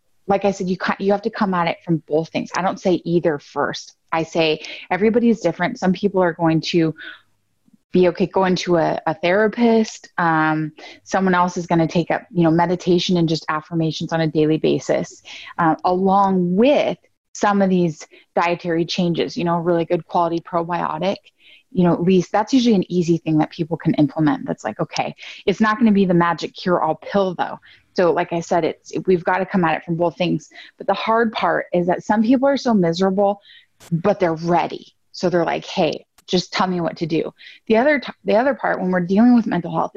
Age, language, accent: 20-39, English, American